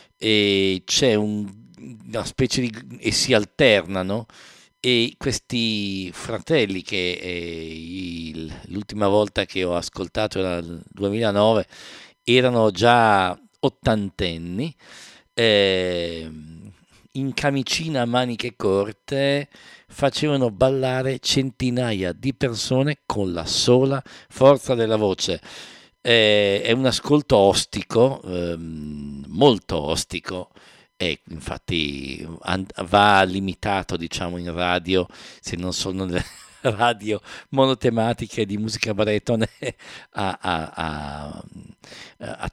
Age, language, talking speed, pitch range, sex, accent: 50-69, English, 95 wpm, 90-125 Hz, male, Italian